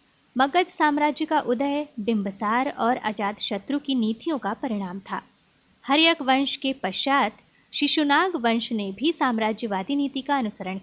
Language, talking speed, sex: Hindi, 140 wpm, female